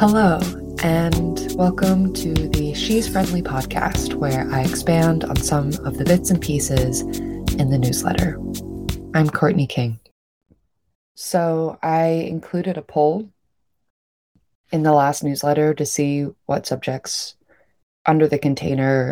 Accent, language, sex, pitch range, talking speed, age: American, English, female, 135-155 Hz, 125 wpm, 20-39